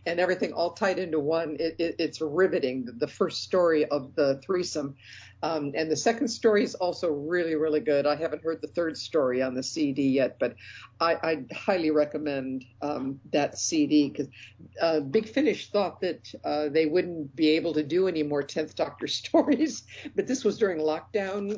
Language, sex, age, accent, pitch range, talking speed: English, female, 50-69, American, 145-180 Hz, 180 wpm